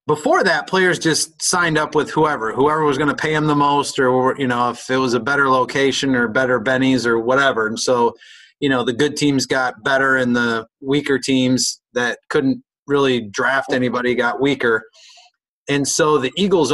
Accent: American